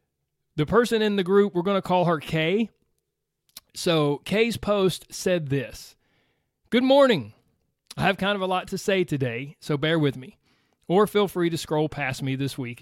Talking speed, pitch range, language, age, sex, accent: 185 wpm, 135-190 Hz, English, 30-49, male, American